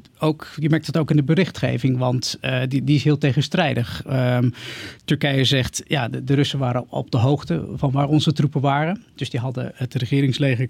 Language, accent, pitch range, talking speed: Dutch, Dutch, 130-160 Hz, 185 wpm